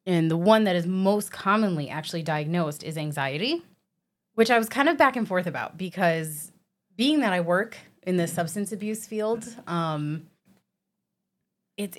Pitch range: 155-195 Hz